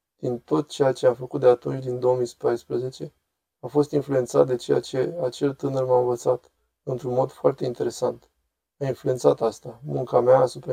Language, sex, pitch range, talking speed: Romanian, male, 120-145 Hz, 170 wpm